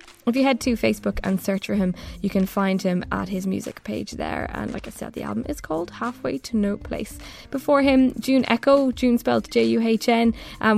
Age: 10-29